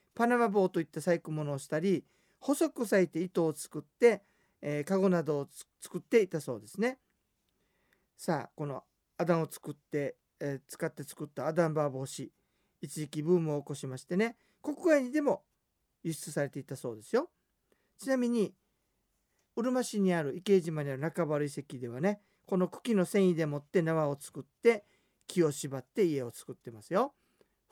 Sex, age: male, 40-59